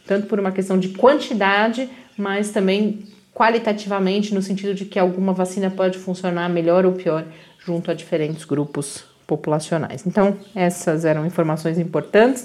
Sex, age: female, 30-49